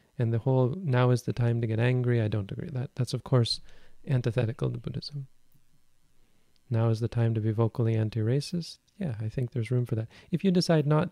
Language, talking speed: English, 210 wpm